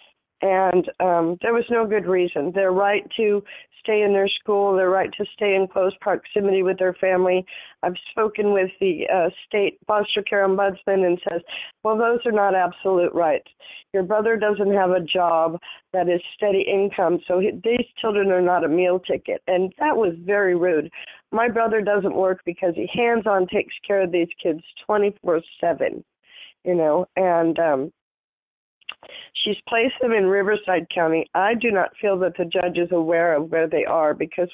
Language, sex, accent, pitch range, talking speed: English, female, American, 180-205 Hz, 180 wpm